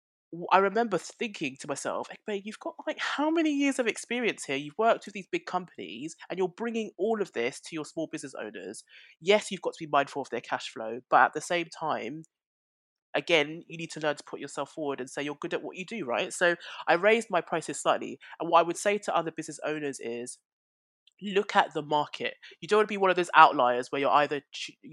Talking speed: 235 wpm